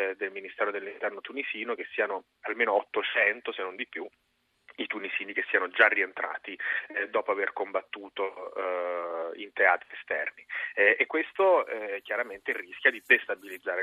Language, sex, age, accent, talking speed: Italian, male, 30-49, native, 145 wpm